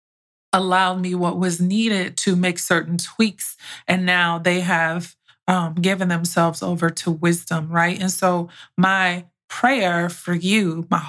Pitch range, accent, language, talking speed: 170-190 Hz, American, English, 145 wpm